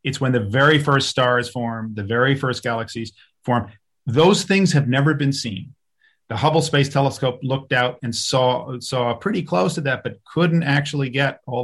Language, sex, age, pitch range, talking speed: English, male, 40-59, 120-145 Hz, 185 wpm